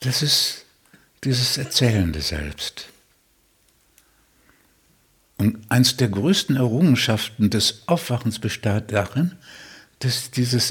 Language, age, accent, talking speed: German, 60-79, German, 90 wpm